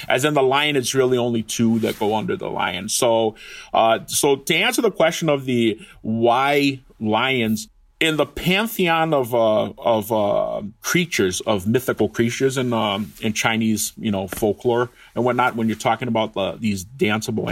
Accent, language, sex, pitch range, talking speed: American, English, male, 110-130 Hz, 175 wpm